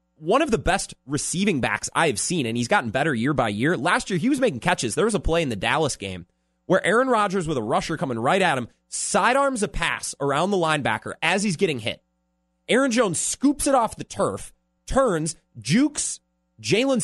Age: 30-49